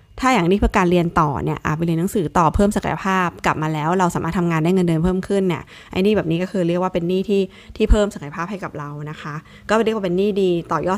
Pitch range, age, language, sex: 165-200 Hz, 20-39, Thai, female